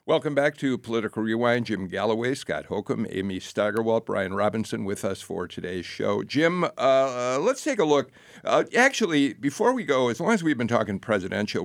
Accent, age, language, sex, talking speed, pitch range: American, 50-69, English, male, 185 wpm, 110-150 Hz